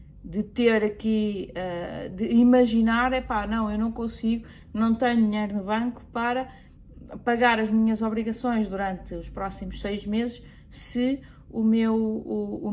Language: Portuguese